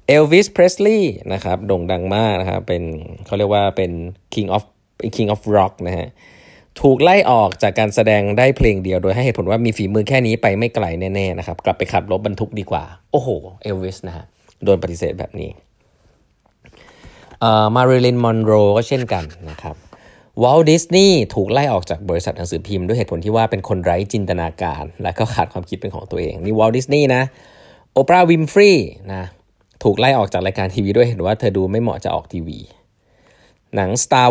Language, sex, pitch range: Thai, male, 90-120 Hz